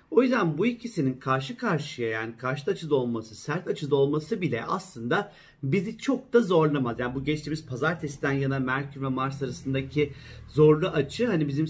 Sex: male